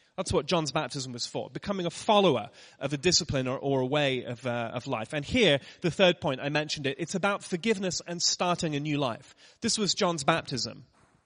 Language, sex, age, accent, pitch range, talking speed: English, male, 30-49, British, 145-185 Hz, 210 wpm